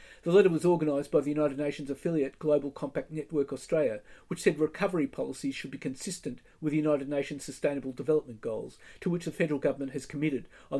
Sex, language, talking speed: male, English, 195 wpm